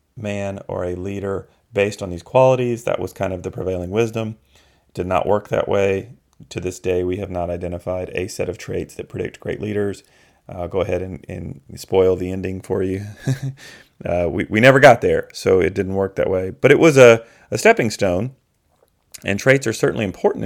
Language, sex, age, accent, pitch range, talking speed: English, male, 40-59, American, 95-110 Hz, 205 wpm